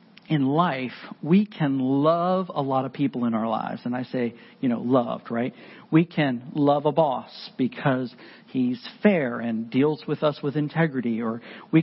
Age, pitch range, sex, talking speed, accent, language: 50-69, 130-195 Hz, male, 180 wpm, American, English